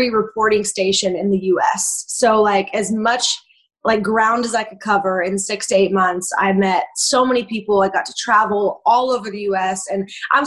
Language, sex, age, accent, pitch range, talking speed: English, female, 20-39, American, 195-225 Hz, 210 wpm